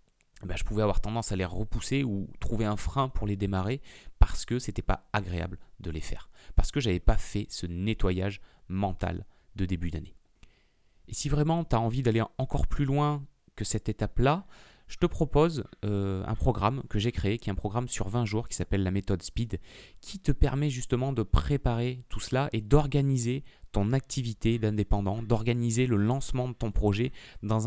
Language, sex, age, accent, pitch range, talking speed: French, male, 30-49, French, 95-125 Hz, 195 wpm